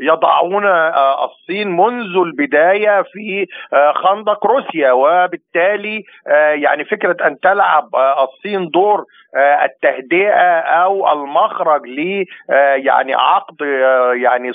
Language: Arabic